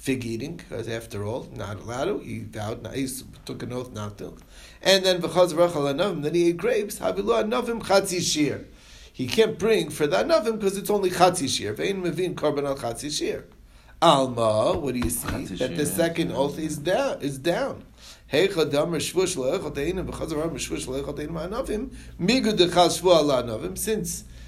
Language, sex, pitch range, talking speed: English, male, 130-185 Hz, 175 wpm